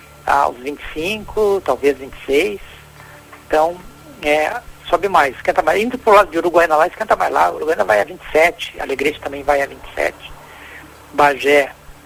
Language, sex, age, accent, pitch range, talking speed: Portuguese, male, 60-79, Brazilian, 150-195 Hz, 145 wpm